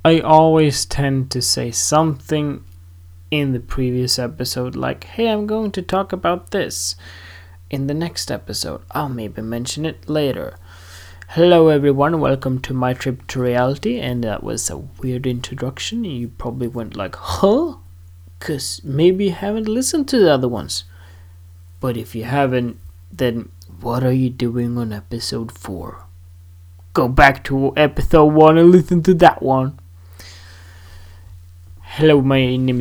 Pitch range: 90-135 Hz